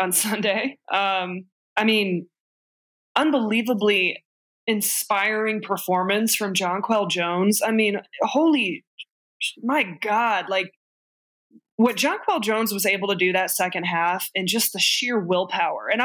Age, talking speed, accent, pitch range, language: 20-39, 125 wpm, American, 185-220 Hz, English